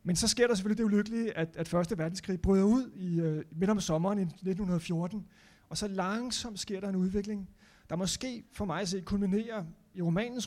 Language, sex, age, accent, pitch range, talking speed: Danish, male, 30-49, native, 170-205 Hz, 200 wpm